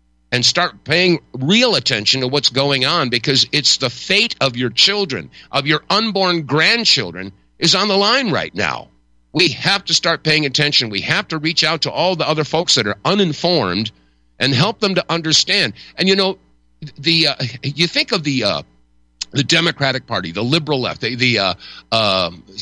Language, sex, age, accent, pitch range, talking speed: English, male, 50-69, American, 115-175 Hz, 185 wpm